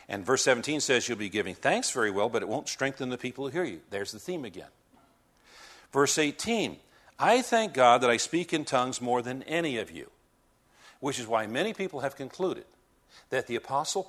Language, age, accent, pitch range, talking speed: English, 50-69, American, 105-135 Hz, 205 wpm